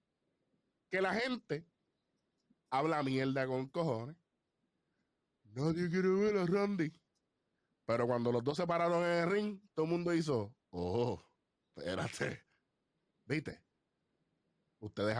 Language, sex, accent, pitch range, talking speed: Spanish, male, American, 120-170 Hz, 115 wpm